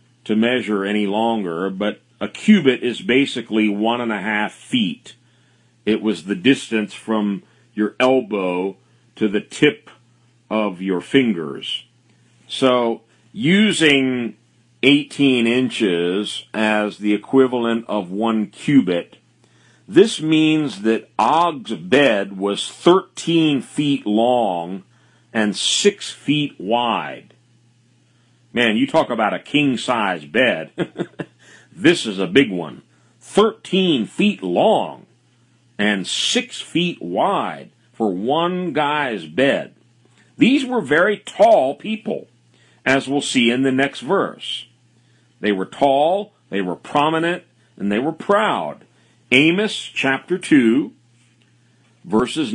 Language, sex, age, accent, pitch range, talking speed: English, male, 50-69, American, 110-140 Hz, 115 wpm